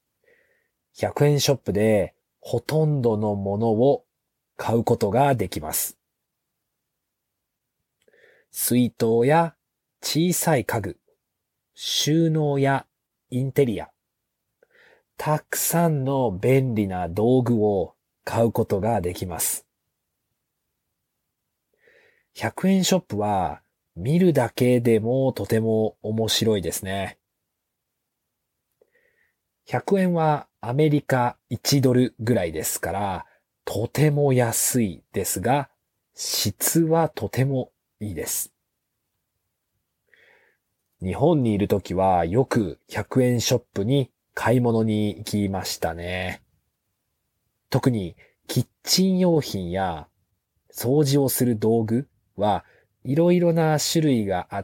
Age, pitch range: 40-59, 105-145 Hz